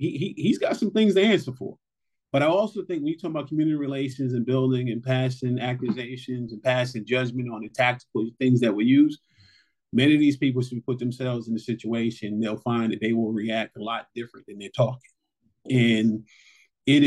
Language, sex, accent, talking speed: English, male, American, 205 wpm